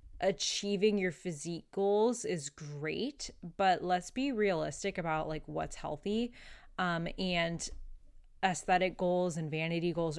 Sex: female